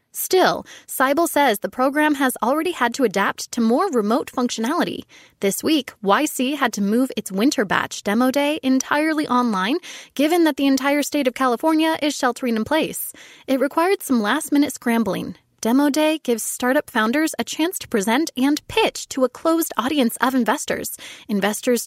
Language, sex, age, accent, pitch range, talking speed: English, female, 20-39, American, 230-295 Hz, 165 wpm